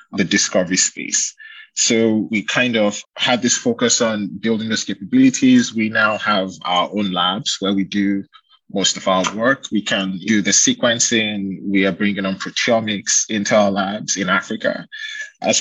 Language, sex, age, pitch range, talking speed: English, male, 20-39, 100-120 Hz, 165 wpm